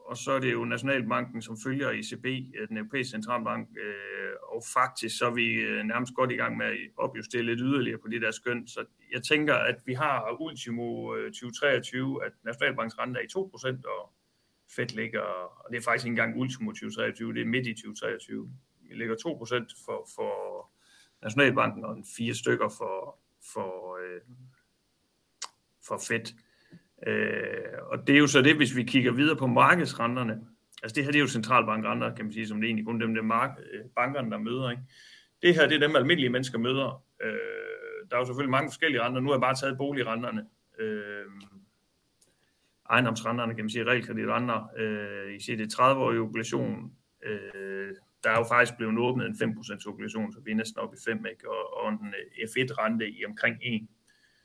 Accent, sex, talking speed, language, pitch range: native, male, 185 wpm, Danish, 115-140 Hz